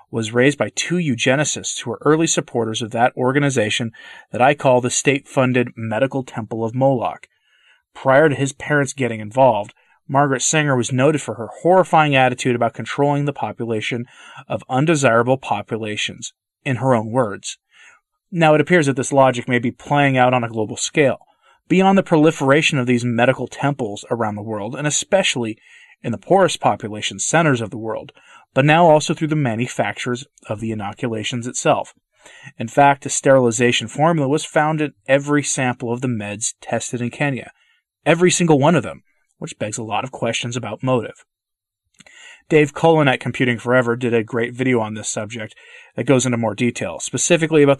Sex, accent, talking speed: male, American, 175 wpm